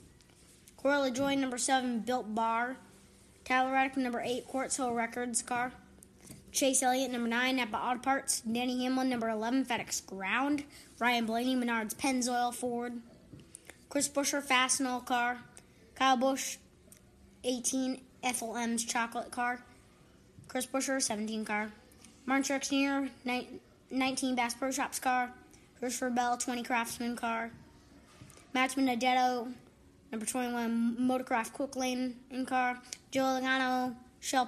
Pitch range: 240-270 Hz